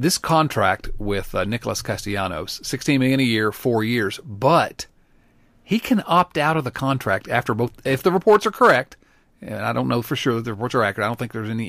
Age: 40-59